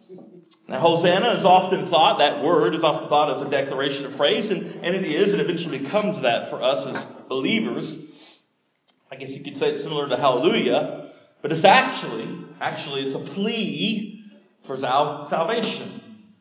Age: 40-59